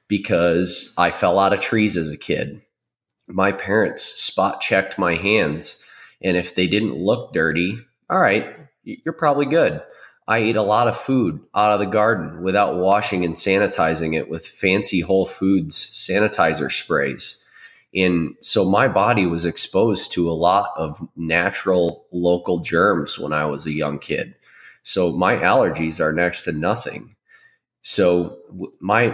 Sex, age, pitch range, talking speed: male, 20-39, 85-100 Hz, 155 wpm